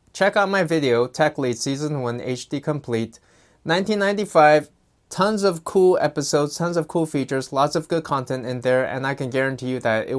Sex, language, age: male, English, 20-39